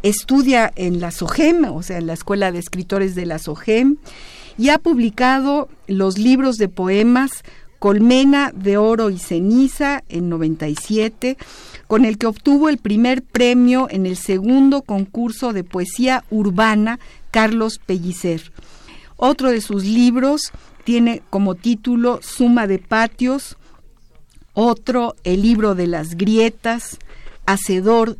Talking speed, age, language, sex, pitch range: 130 wpm, 50-69, Spanish, female, 190-245 Hz